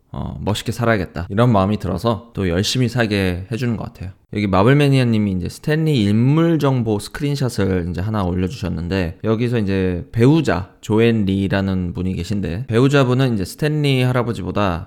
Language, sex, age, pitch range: Korean, male, 20-39, 95-130 Hz